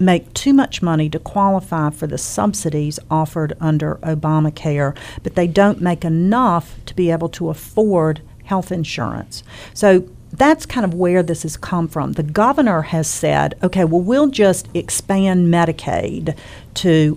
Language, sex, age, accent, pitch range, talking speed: English, female, 50-69, American, 155-185 Hz, 155 wpm